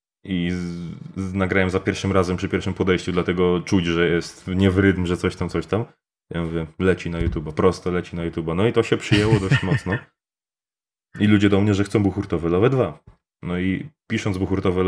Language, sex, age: Polish, male, 20-39